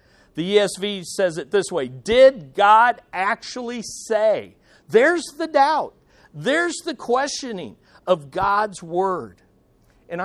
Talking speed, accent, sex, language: 115 wpm, American, male, English